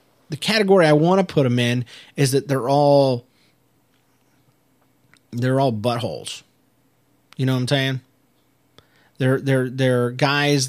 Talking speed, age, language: 135 wpm, 30-49, English